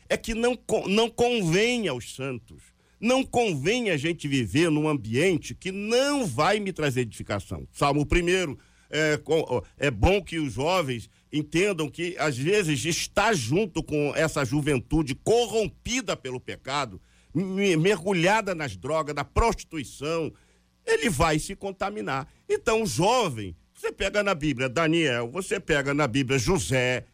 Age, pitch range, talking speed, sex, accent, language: 50-69, 140-205 Hz, 135 wpm, male, Brazilian, Portuguese